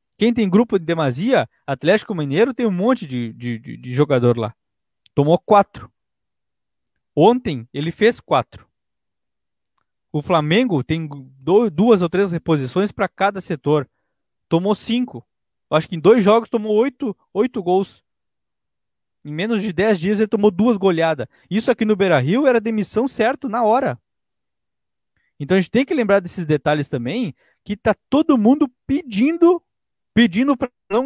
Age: 20-39